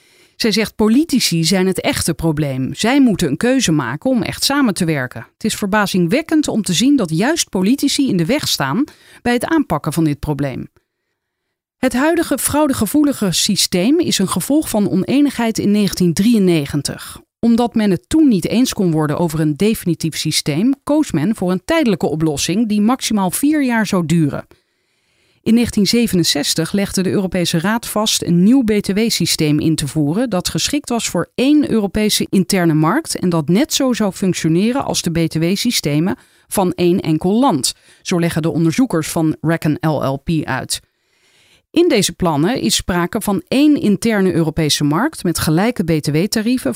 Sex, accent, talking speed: female, Dutch, 160 wpm